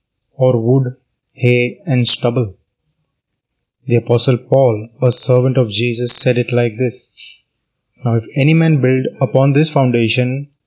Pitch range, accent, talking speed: 120-135 Hz, native, 135 wpm